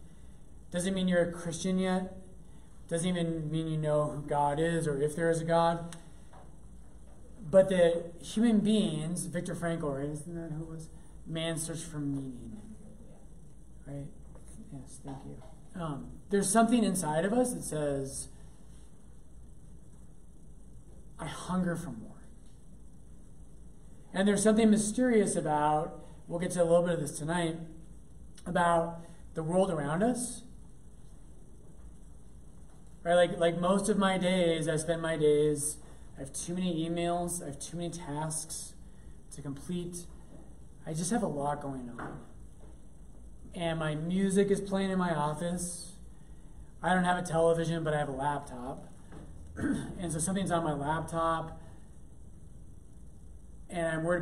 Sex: male